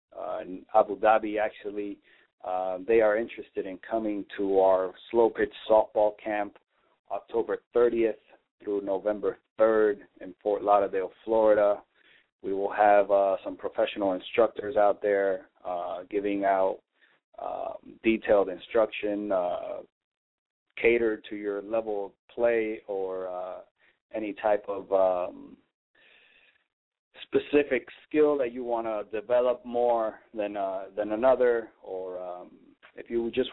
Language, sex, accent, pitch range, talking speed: English, male, American, 100-120 Hz, 125 wpm